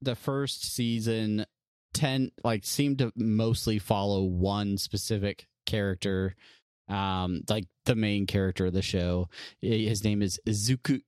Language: English